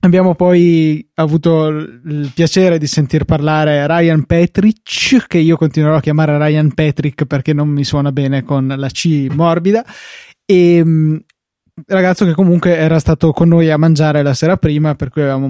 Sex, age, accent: male, 20-39, native